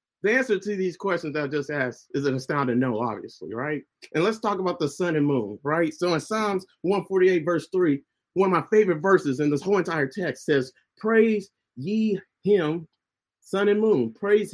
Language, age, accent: English, 30-49, American